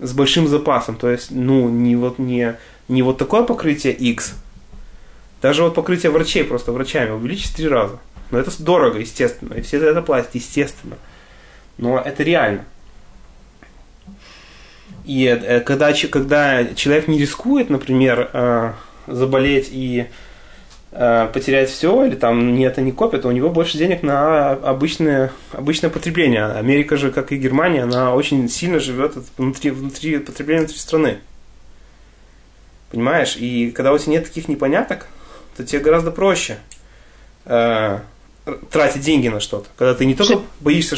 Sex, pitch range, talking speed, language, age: male, 120-150 Hz, 140 wpm, English, 20-39